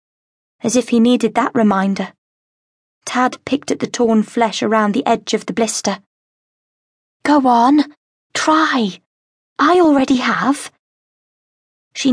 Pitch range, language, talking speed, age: 220-280 Hz, English, 125 wpm, 20-39